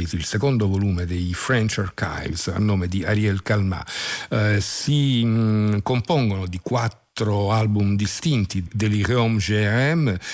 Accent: native